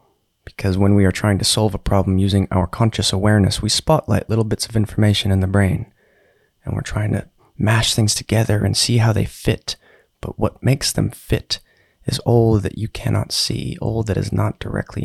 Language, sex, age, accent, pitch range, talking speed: English, male, 30-49, American, 100-120 Hz, 200 wpm